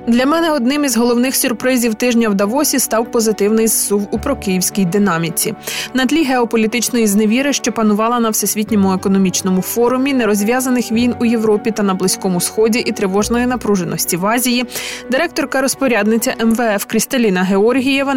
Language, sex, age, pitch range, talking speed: Ukrainian, female, 20-39, 200-245 Hz, 140 wpm